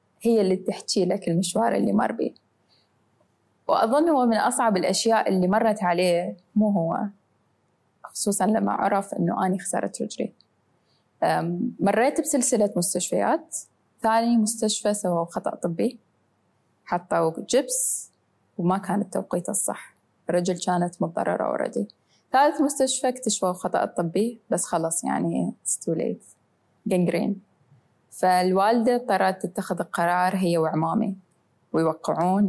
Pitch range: 175-220 Hz